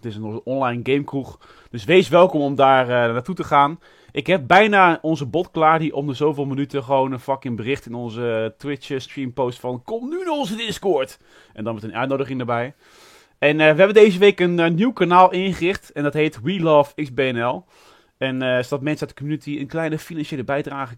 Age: 30-49